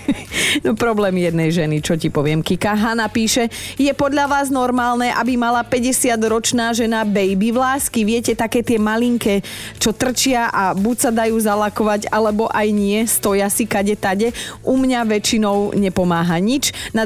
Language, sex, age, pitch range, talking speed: Slovak, female, 30-49, 175-230 Hz, 150 wpm